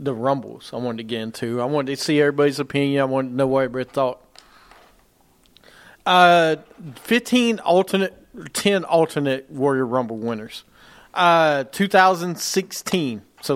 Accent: American